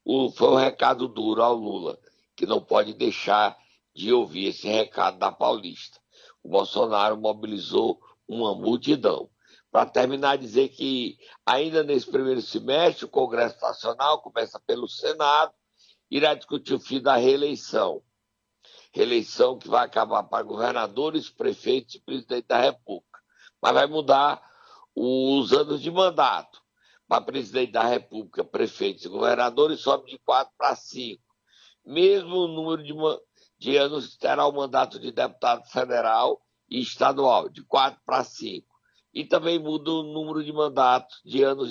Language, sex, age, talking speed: Portuguese, male, 60-79, 140 wpm